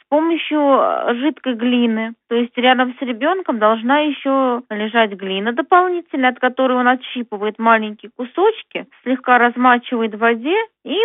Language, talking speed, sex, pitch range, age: Russian, 135 wpm, female, 215-275 Hz, 20-39